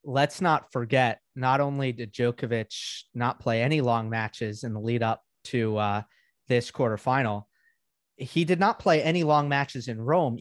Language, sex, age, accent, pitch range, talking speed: English, male, 30-49, American, 115-145 Hz, 165 wpm